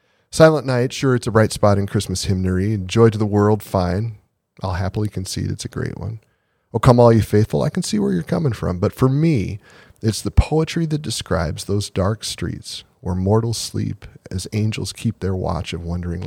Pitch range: 95-115 Hz